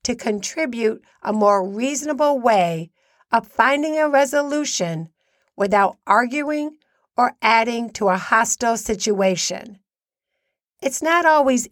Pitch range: 205-295 Hz